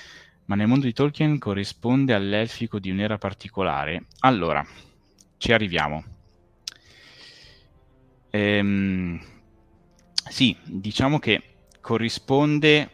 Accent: native